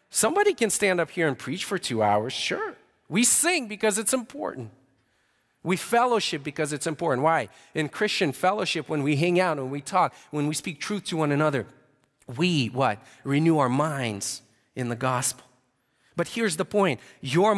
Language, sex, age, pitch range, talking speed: English, male, 40-59, 135-200 Hz, 180 wpm